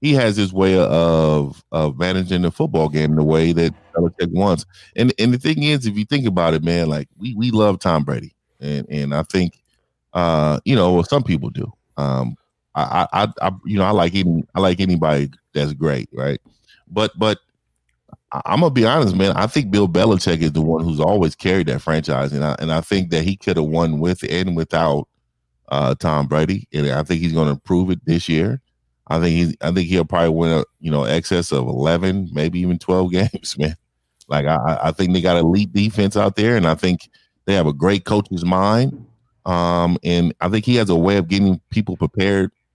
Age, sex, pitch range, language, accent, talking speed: 30-49, male, 80-100 Hz, English, American, 215 wpm